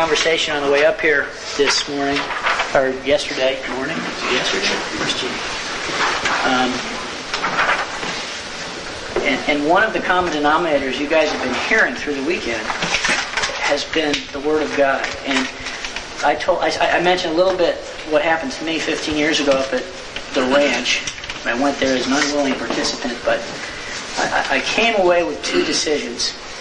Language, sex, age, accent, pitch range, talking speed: English, male, 40-59, American, 130-155 Hz, 155 wpm